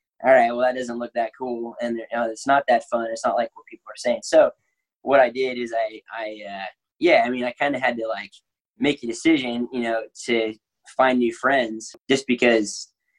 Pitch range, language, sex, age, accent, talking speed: 115-160 Hz, English, male, 10-29, American, 225 wpm